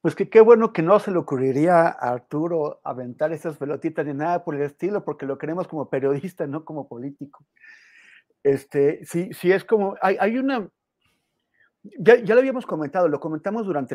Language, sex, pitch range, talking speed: Spanish, male, 140-185 Hz, 190 wpm